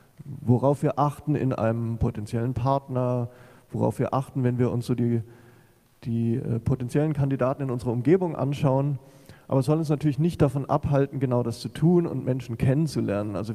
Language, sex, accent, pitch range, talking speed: German, male, German, 120-145 Hz, 170 wpm